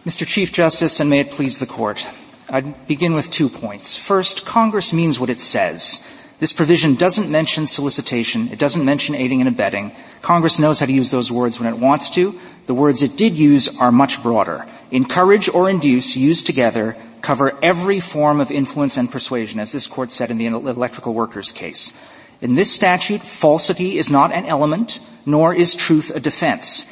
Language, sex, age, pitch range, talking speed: English, male, 40-59, 130-180 Hz, 185 wpm